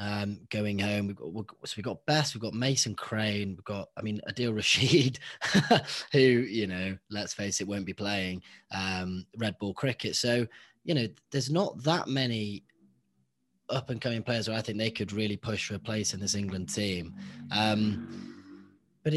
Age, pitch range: 20-39, 100-120 Hz